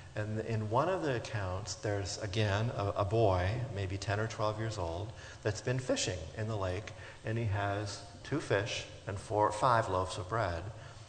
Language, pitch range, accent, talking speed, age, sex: English, 95-115 Hz, American, 185 wpm, 50-69, male